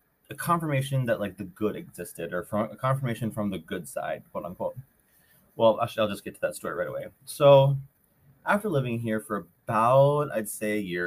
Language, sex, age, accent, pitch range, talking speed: English, male, 30-49, American, 90-135 Hz, 200 wpm